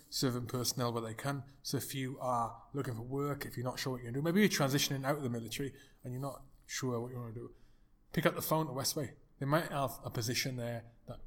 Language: English